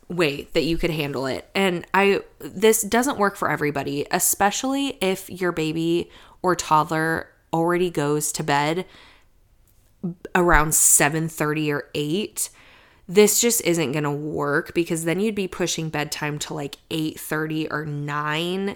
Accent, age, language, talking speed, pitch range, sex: American, 20-39, English, 145 wpm, 150-185 Hz, female